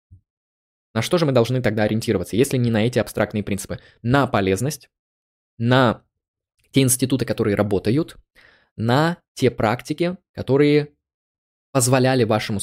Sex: male